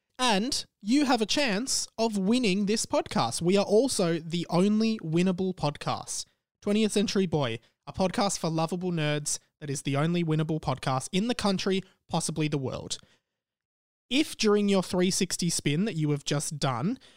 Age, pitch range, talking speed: 20-39, 145-195 Hz, 160 wpm